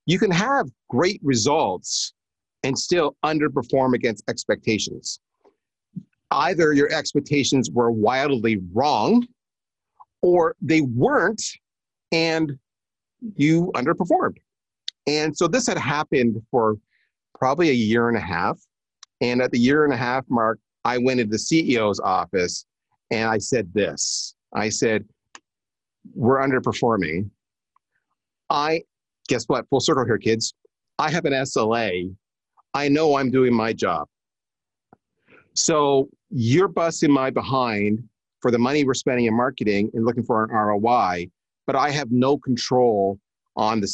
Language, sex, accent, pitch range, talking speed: English, male, American, 110-145 Hz, 130 wpm